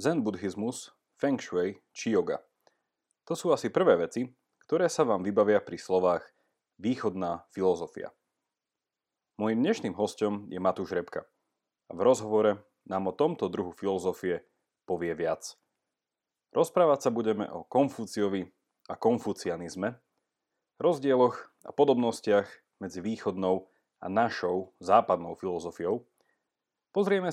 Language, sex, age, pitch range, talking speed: Slovak, male, 30-49, 95-125 Hz, 115 wpm